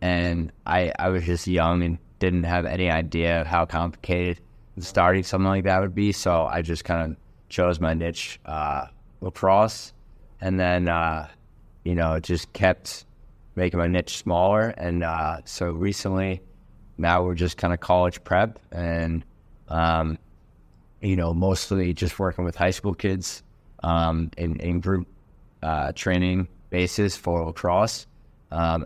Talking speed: 150 wpm